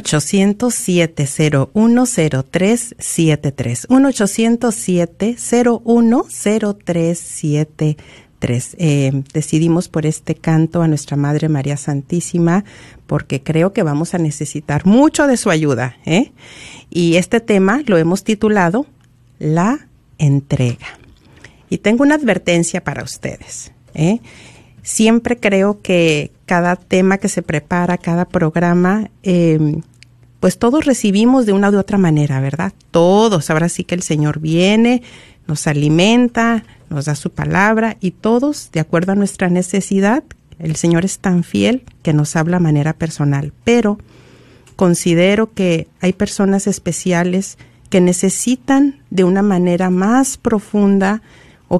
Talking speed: 125 wpm